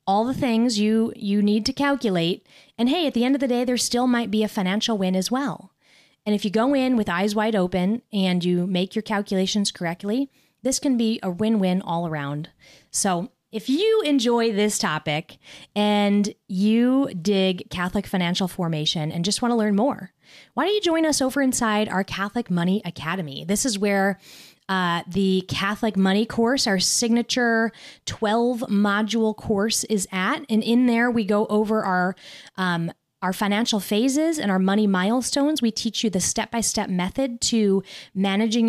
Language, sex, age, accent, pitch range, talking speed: English, female, 20-39, American, 190-240 Hz, 175 wpm